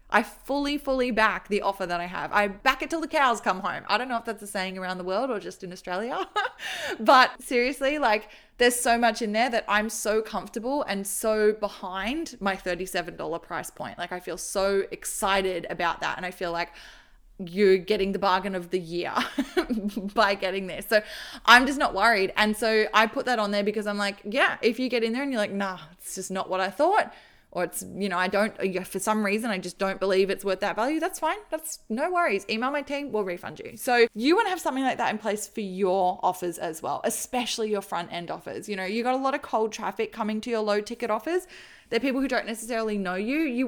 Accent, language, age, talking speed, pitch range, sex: Australian, English, 20-39, 240 wpm, 190-250 Hz, female